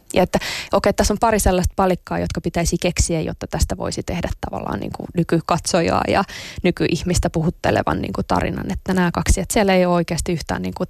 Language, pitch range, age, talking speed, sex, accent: Finnish, 170-190 Hz, 20-39, 195 wpm, female, native